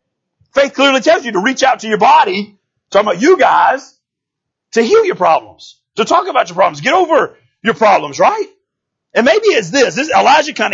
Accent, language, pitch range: American, English, 185-295 Hz